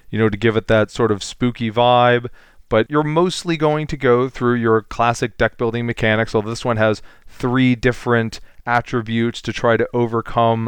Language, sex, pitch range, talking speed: English, male, 110-135 Hz, 185 wpm